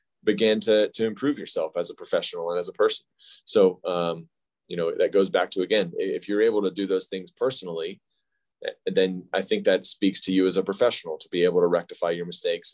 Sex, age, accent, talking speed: male, 20-39, American, 215 wpm